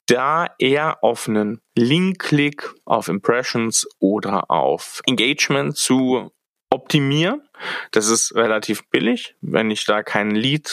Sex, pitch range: male, 115-140 Hz